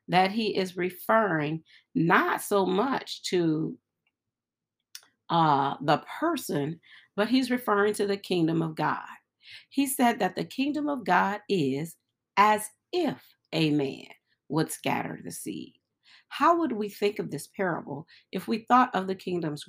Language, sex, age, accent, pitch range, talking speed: English, female, 40-59, American, 165-230 Hz, 145 wpm